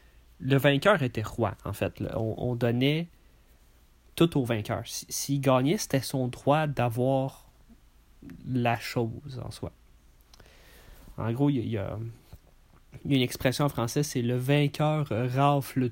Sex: male